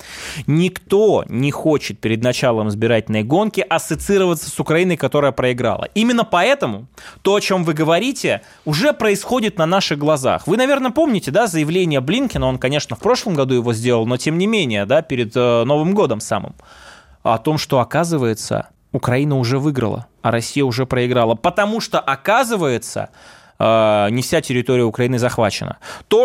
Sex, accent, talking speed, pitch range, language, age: male, native, 150 wpm, 130-205 Hz, Russian, 20-39